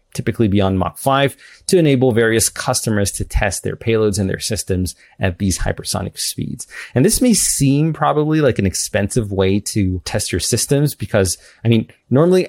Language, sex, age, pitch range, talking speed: English, male, 30-49, 100-125 Hz, 175 wpm